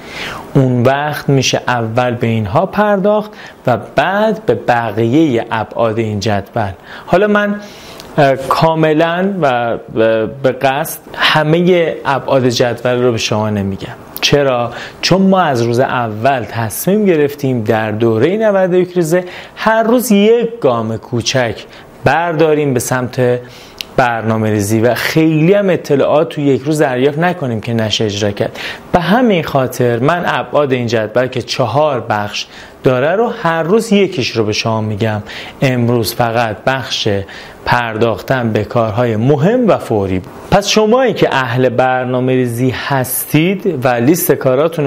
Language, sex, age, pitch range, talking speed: Persian, male, 30-49, 115-160 Hz, 135 wpm